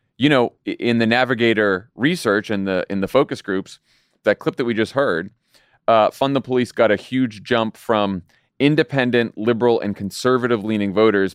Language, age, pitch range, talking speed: English, 30-49, 100-120 Hz, 175 wpm